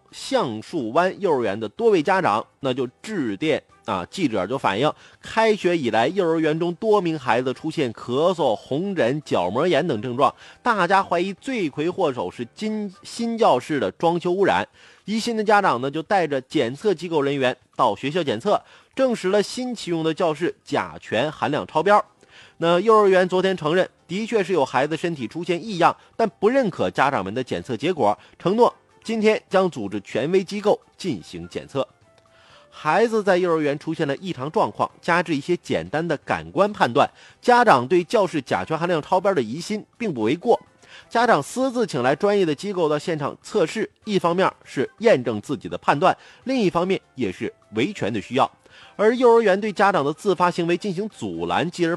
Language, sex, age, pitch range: Chinese, male, 30-49, 155-210 Hz